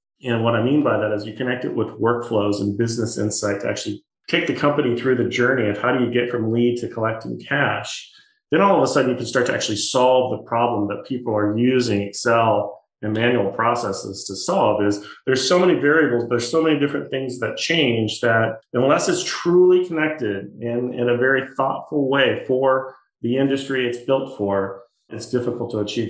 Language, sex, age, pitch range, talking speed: English, male, 40-59, 110-135 Hz, 205 wpm